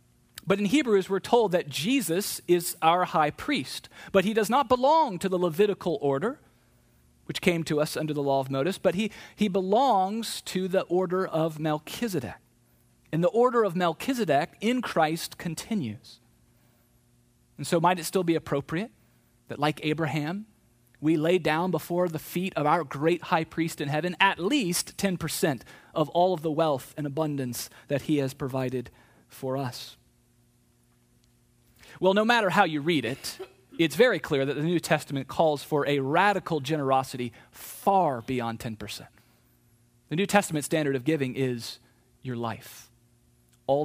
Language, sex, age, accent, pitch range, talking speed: English, male, 40-59, American, 125-180 Hz, 160 wpm